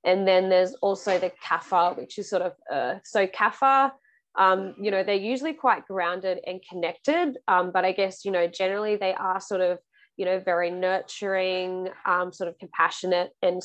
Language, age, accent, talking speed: English, 20-39, Australian, 185 wpm